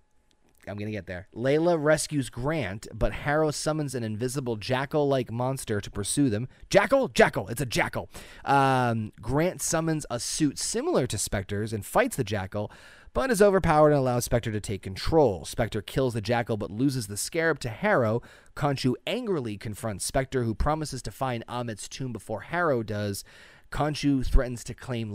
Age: 30-49